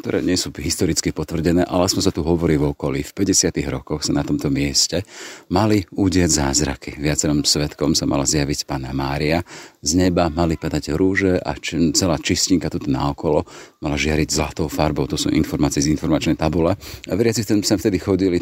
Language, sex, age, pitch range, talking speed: Slovak, male, 40-59, 75-90 Hz, 175 wpm